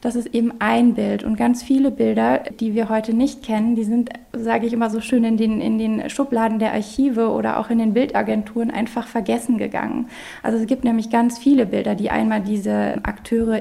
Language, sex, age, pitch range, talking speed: German, female, 20-39, 210-245 Hz, 205 wpm